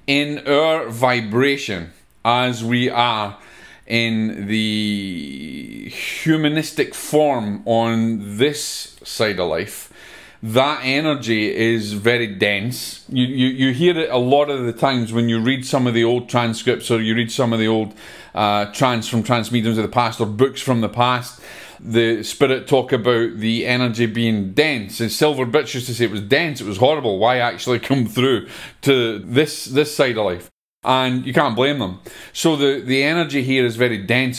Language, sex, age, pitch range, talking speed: English, male, 30-49, 115-140 Hz, 175 wpm